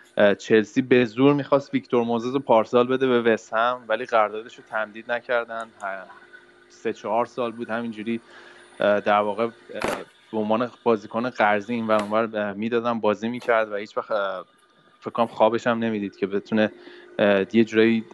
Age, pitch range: 20-39, 110-125 Hz